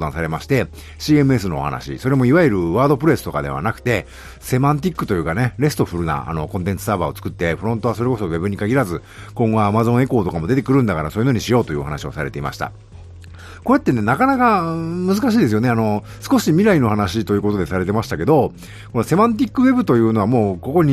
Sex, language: male, Japanese